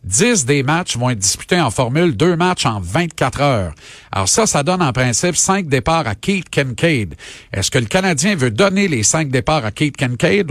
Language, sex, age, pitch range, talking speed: French, male, 50-69, 125-175 Hz, 205 wpm